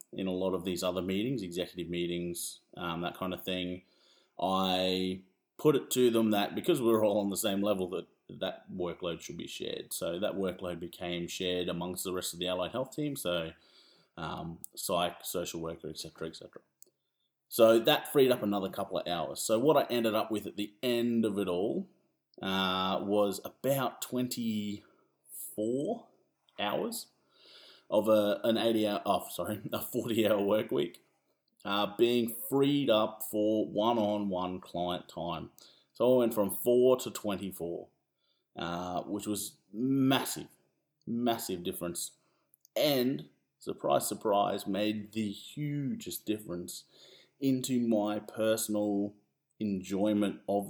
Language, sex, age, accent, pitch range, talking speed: English, male, 30-49, Australian, 90-110 Hz, 150 wpm